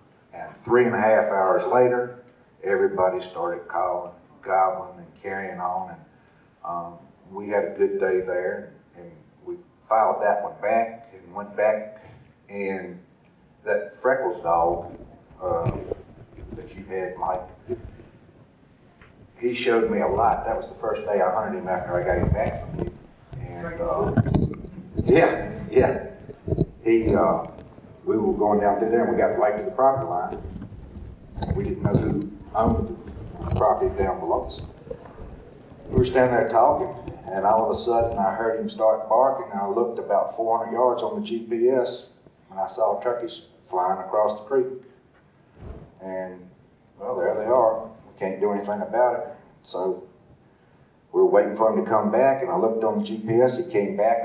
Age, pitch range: 50-69, 100-125 Hz